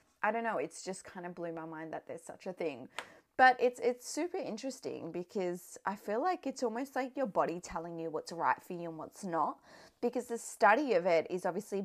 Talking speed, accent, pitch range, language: 230 wpm, Australian, 175-250 Hz, English